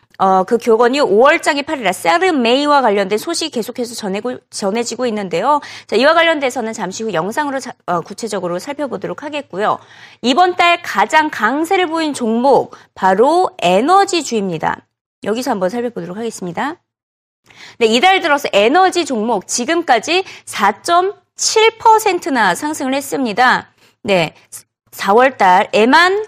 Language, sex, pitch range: Korean, female, 215-315 Hz